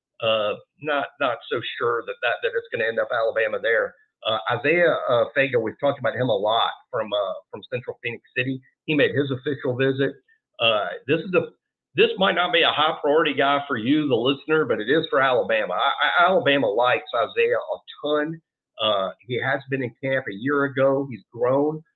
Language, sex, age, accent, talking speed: English, male, 50-69, American, 205 wpm